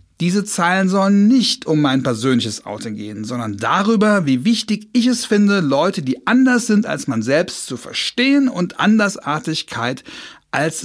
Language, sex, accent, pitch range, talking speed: German, male, German, 155-225 Hz, 155 wpm